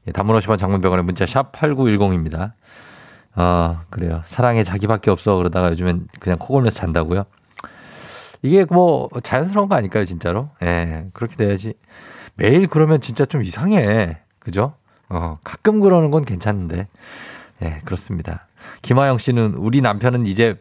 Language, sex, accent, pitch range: Korean, male, native, 95-135 Hz